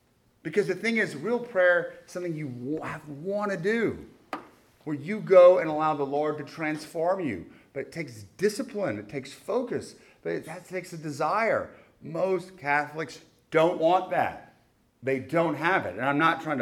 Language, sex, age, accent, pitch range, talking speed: English, male, 40-59, American, 135-185 Hz, 170 wpm